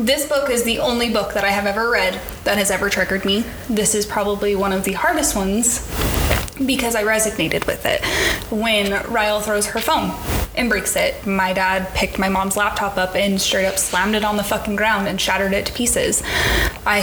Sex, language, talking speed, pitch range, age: female, English, 210 wpm, 195-225 Hz, 20-39